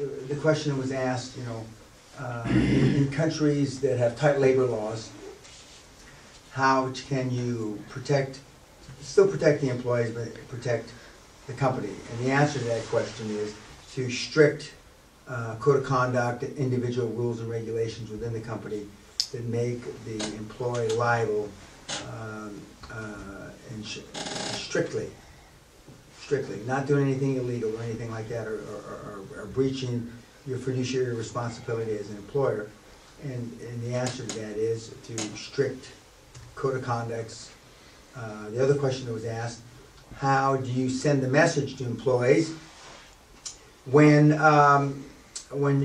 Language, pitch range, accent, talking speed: English, 115-140 Hz, American, 140 wpm